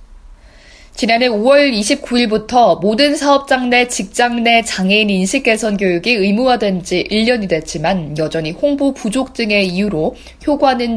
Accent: native